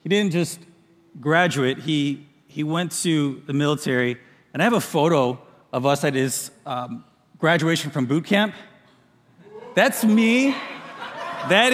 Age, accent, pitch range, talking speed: 30-49, American, 150-210 Hz, 140 wpm